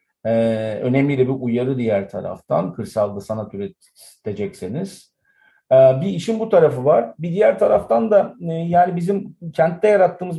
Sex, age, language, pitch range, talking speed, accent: male, 50-69, Turkish, 115-155 Hz, 140 wpm, native